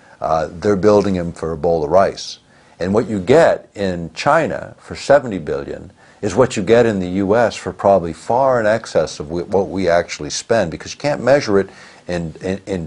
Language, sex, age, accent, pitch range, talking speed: English, male, 60-79, American, 90-110 Hz, 200 wpm